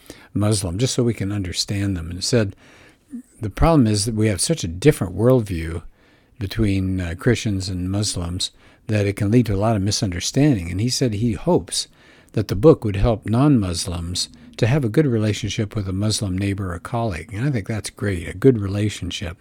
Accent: American